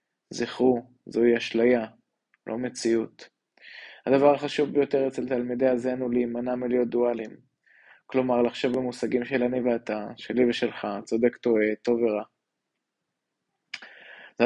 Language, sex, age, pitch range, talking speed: Hebrew, male, 20-39, 115-130 Hz, 120 wpm